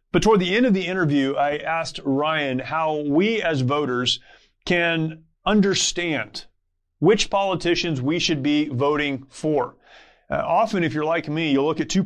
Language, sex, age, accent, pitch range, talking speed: English, male, 30-49, American, 145-180 Hz, 165 wpm